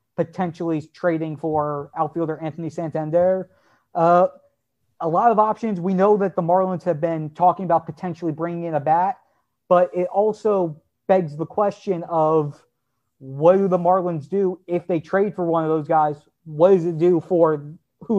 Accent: American